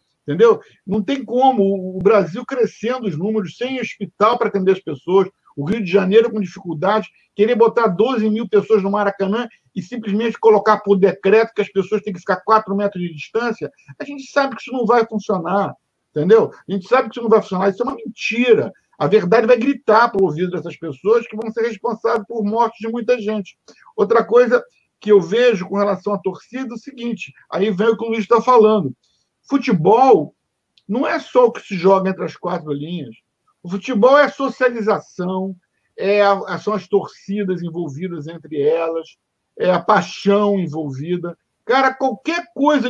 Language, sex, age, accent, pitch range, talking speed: Portuguese, male, 50-69, Brazilian, 195-240 Hz, 185 wpm